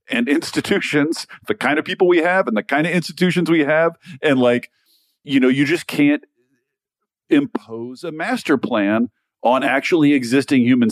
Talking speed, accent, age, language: 165 wpm, American, 40-59, English